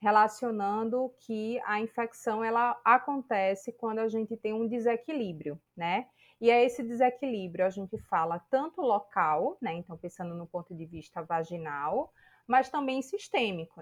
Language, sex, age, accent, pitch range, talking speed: Portuguese, female, 20-39, Brazilian, 190-245 Hz, 145 wpm